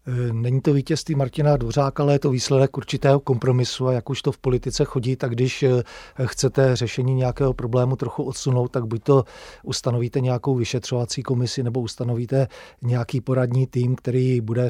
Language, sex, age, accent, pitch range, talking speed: Czech, male, 40-59, native, 125-135 Hz, 165 wpm